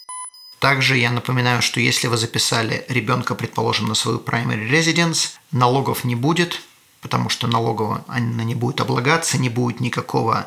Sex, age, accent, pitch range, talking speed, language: male, 30-49, native, 120-145 Hz, 150 wpm, Russian